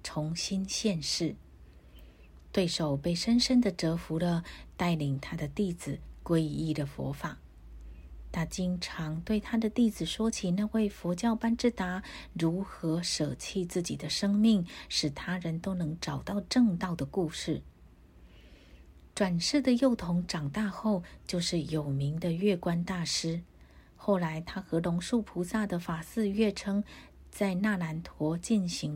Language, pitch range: Chinese, 155-200 Hz